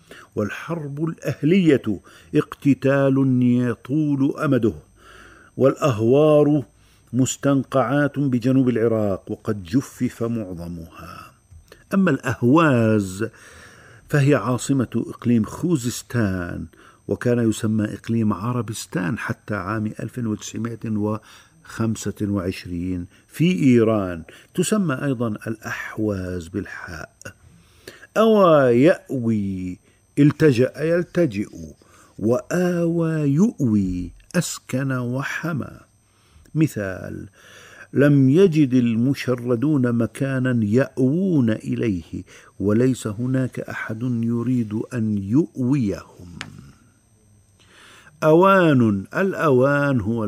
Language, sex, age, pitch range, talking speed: Arabic, male, 50-69, 105-140 Hz, 65 wpm